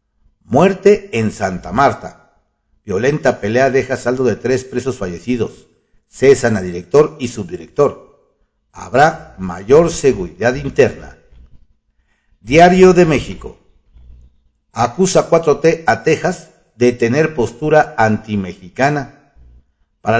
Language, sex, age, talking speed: Spanish, male, 50-69, 100 wpm